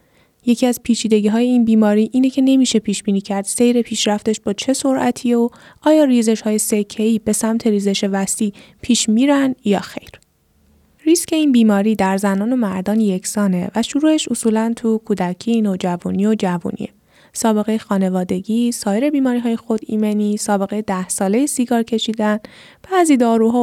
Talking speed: 145 wpm